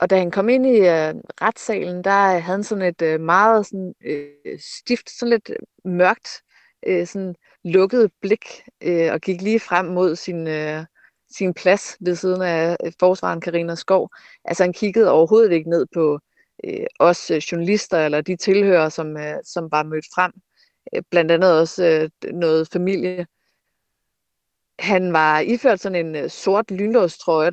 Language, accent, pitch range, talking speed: Danish, native, 160-195 Hz, 160 wpm